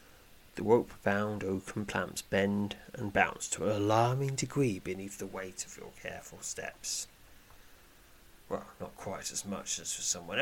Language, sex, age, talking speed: English, male, 30-49, 150 wpm